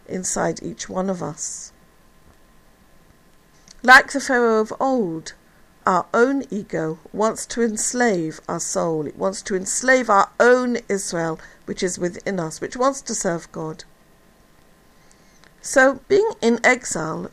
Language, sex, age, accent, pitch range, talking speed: English, female, 50-69, British, 185-260 Hz, 130 wpm